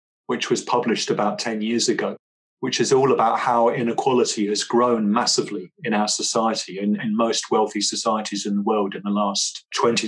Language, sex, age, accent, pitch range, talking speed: English, male, 30-49, British, 110-125 Hz, 185 wpm